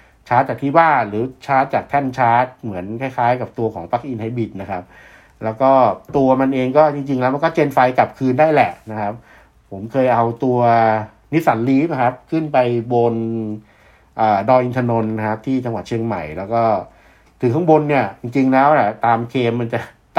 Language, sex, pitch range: Thai, male, 110-135 Hz